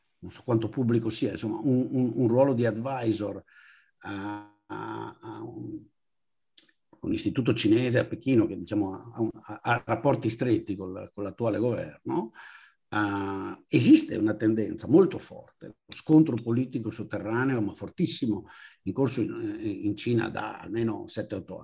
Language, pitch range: Italian, 105-135 Hz